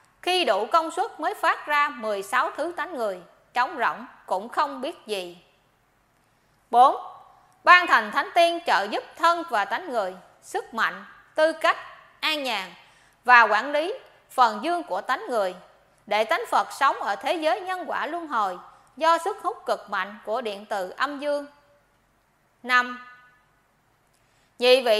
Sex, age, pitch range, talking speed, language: female, 20-39, 215-335 Hz, 160 wpm, Vietnamese